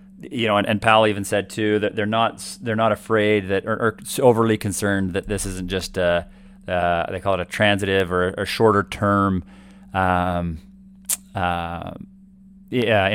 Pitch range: 95-110 Hz